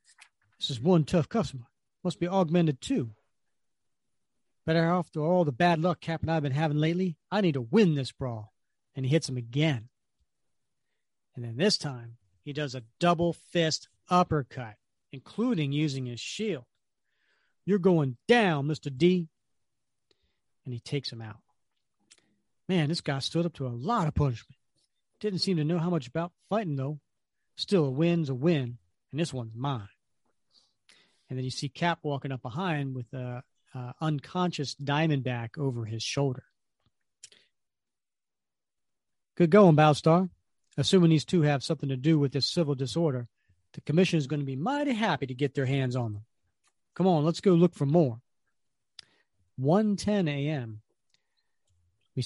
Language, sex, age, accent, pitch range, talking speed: English, male, 40-59, American, 125-170 Hz, 160 wpm